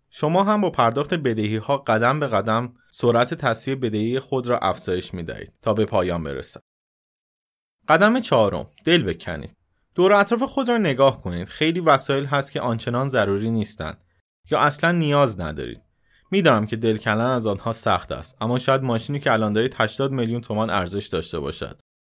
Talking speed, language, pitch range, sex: 165 wpm, Persian, 100-135 Hz, male